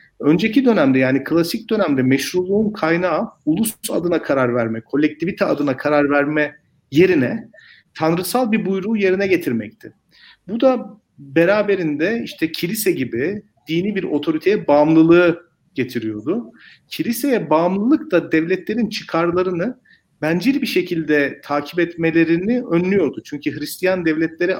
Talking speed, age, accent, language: 110 wpm, 40-59, native, Turkish